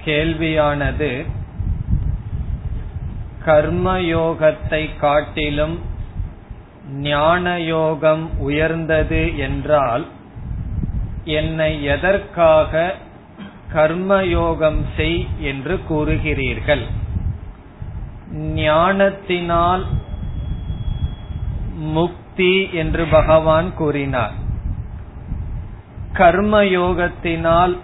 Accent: native